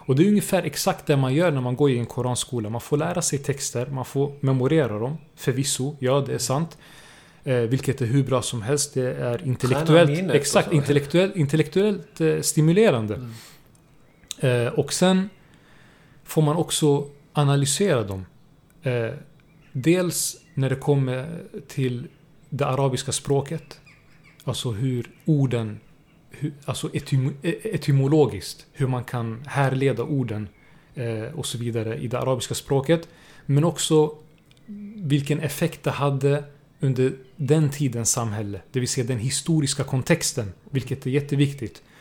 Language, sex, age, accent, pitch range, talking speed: Swedish, male, 30-49, native, 130-155 Hz, 130 wpm